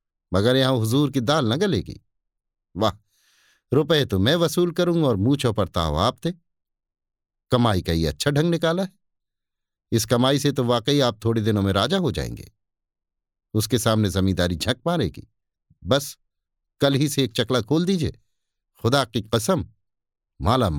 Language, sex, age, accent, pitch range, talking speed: Hindi, male, 50-69, native, 100-145 Hz, 155 wpm